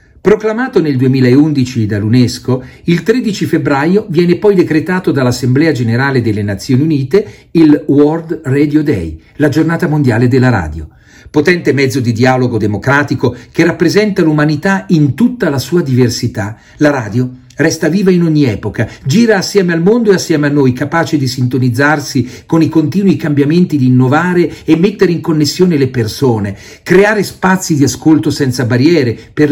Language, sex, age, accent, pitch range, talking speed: Italian, male, 50-69, native, 125-165 Hz, 150 wpm